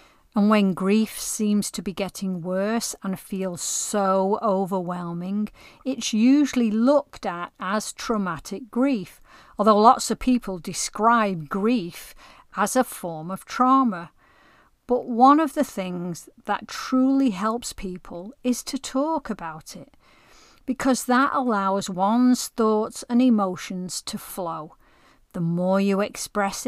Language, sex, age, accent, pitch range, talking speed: English, female, 40-59, British, 190-235 Hz, 130 wpm